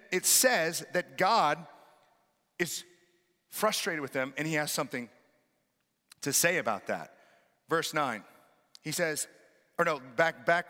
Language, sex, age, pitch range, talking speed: English, male, 40-59, 155-220 Hz, 135 wpm